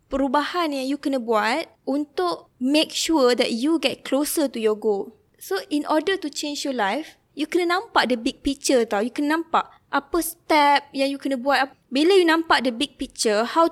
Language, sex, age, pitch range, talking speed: Malay, female, 20-39, 255-340 Hz, 195 wpm